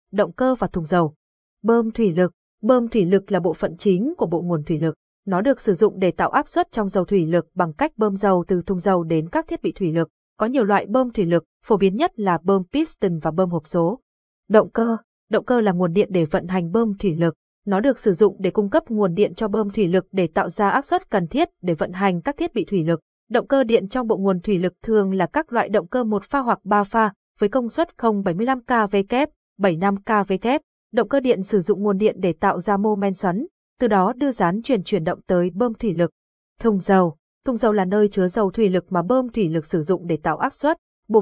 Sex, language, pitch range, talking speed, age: female, Vietnamese, 180-230 Hz, 250 wpm, 20-39